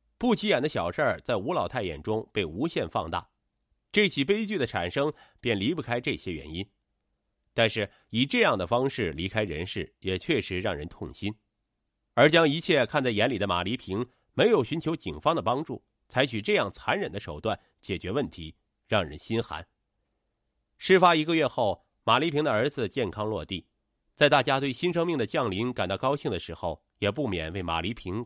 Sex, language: male, Chinese